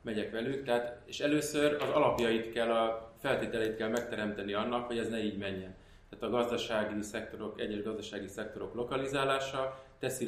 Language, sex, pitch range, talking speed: Hungarian, male, 100-115 Hz, 160 wpm